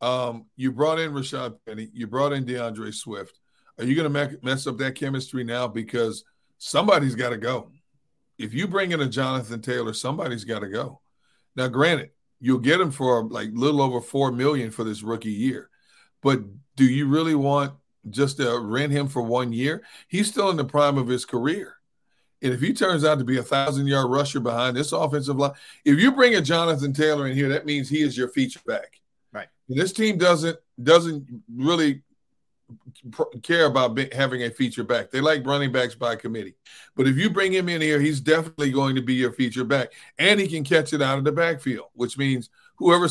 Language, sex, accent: English, male, American